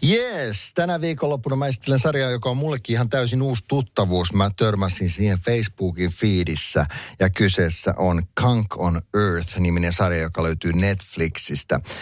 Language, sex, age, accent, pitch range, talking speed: Finnish, male, 50-69, native, 90-120 Hz, 135 wpm